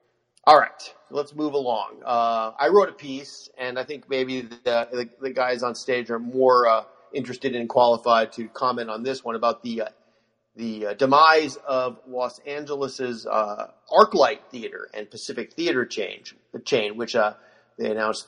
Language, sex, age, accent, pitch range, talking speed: English, male, 40-59, American, 110-145 Hz, 175 wpm